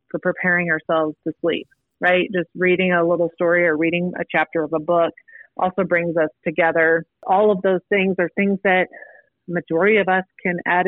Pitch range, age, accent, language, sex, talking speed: 170-200 Hz, 30-49, American, English, female, 190 wpm